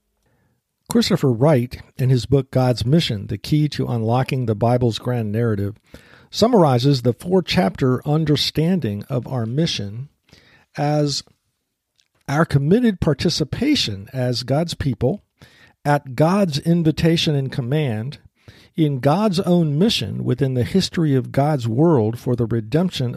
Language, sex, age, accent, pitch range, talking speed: English, male, 50-69, American, 120-170 Hz, 120 wpm